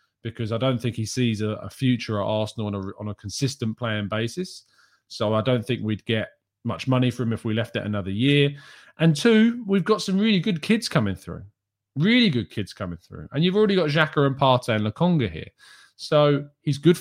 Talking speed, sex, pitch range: 215 wpm, male, 110-155 Hz